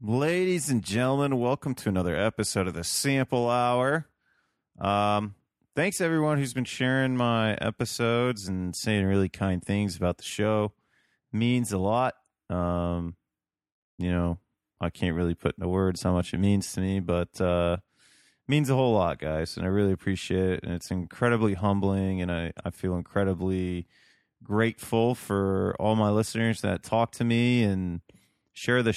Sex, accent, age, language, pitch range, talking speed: male, American, 30-49, English, 95-120 Hz, 165 wpm